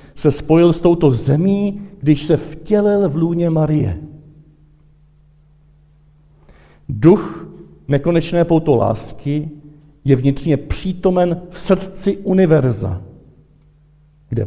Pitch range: 130-165 Hz